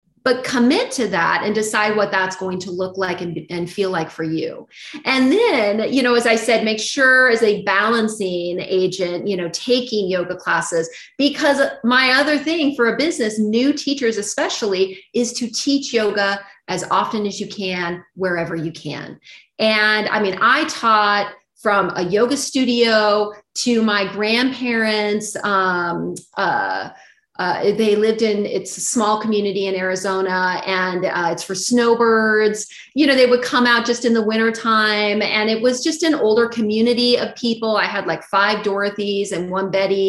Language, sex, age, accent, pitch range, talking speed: English, female, 30-49, American, 195-255 Hz, 170 wpm